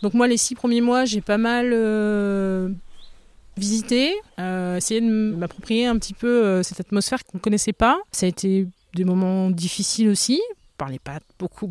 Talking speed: 185 wpm